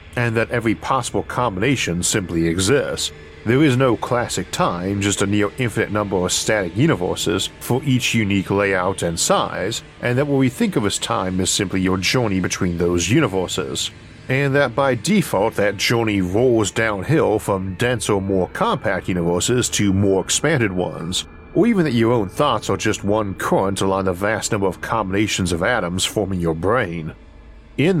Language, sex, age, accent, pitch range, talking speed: English, male, 50-69, American, 95-120 Hz, 170 wpm